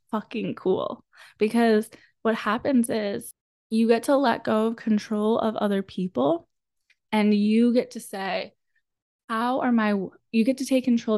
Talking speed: 155 wpm